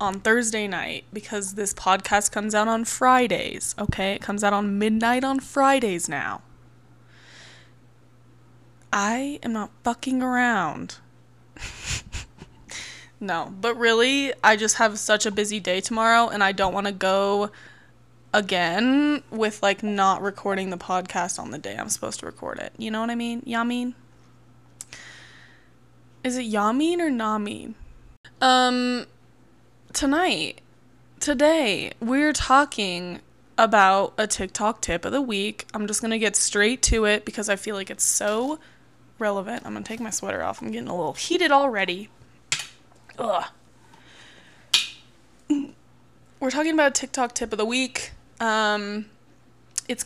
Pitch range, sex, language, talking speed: 200-245 Hz, female, English, 145 wpm